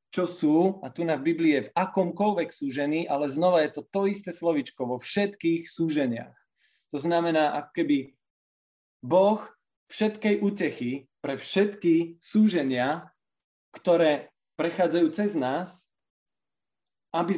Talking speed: 120 wpm